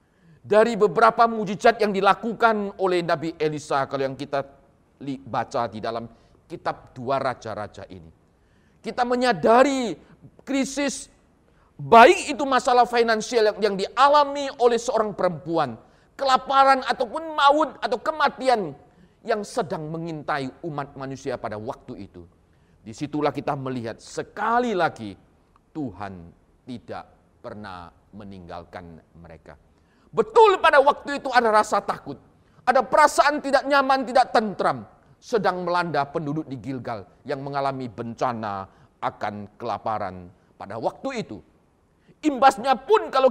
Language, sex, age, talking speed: Indonesian, male, 40-59, 115 wpm